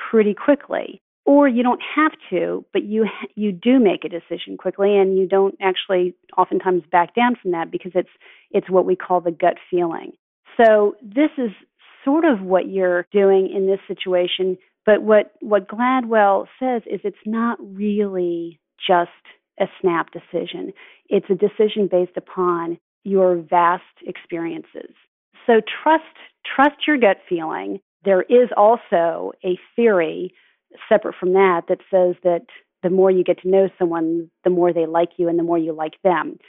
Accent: American